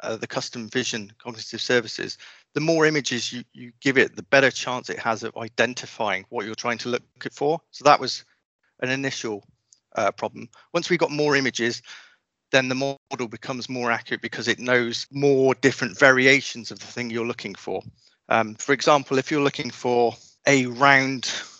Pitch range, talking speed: 120-145 Hz, 180 wpm